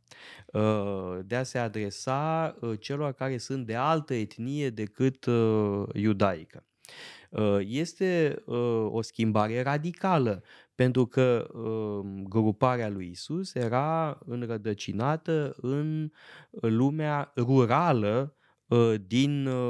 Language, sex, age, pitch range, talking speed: Romanian, male, 20-39, 110-145 Hz, 80 wpm